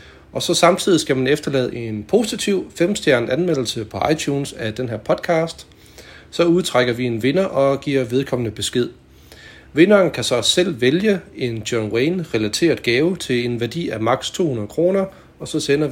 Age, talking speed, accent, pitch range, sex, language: 40-59, 165 wpm, native, 110-145 Hz, male, Danish